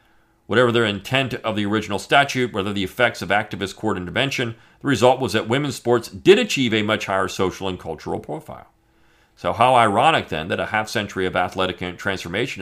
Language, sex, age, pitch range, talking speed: English, male, 40-59, 95-120 Hz, 190 wpm